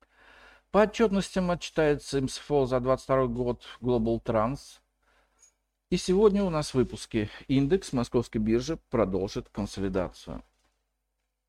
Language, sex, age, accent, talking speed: Russian, male, 50-69, native, 105 wpm